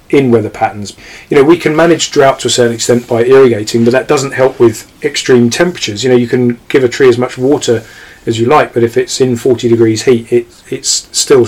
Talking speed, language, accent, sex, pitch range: 230 wpm, English, British, male, 115-135 Hz